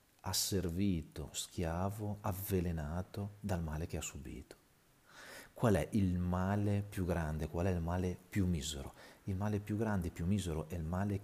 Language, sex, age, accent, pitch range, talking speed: Italian, male, 40-59, native, 85-105 Hz, 160 wpm